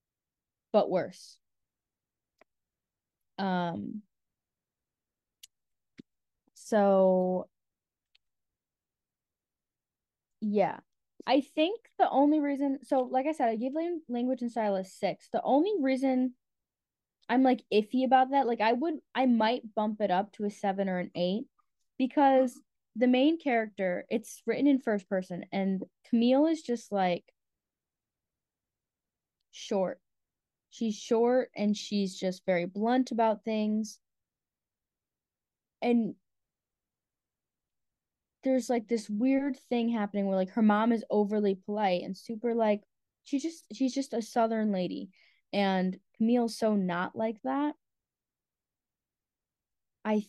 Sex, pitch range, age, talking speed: female, 200-255 Hz, 20-39, 115 wpm